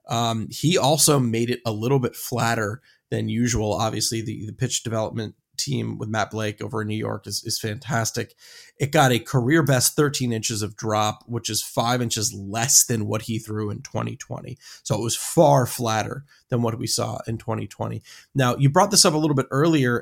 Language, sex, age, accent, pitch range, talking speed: English, male, 20-39, American, 115-135 Hz, 200 wpm